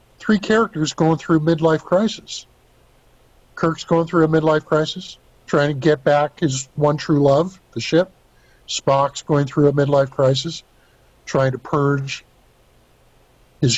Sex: male